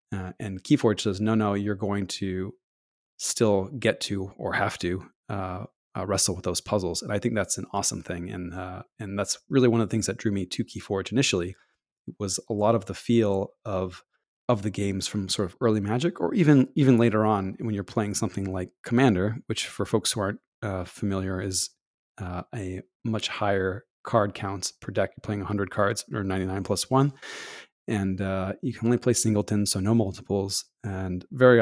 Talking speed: 200 wpm